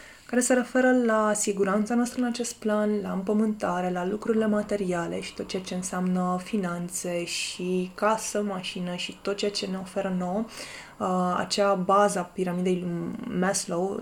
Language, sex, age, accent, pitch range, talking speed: Romanian, female, 20-39, native, 185-215 Hz, 160 wpm